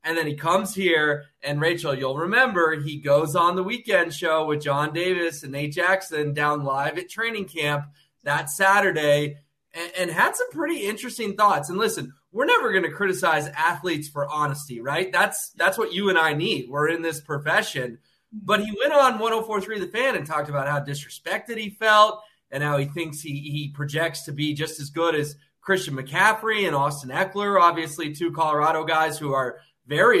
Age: 20-39